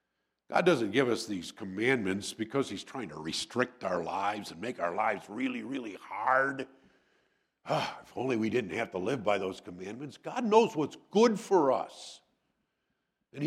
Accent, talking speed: American, 165 wpm